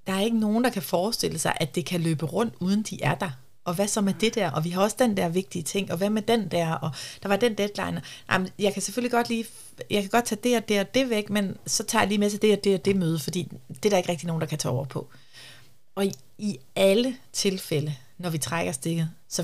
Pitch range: 160-225 Hz